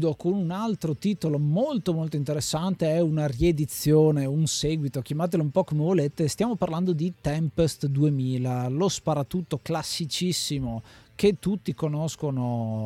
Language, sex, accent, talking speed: Italian, male, native, 130 wpm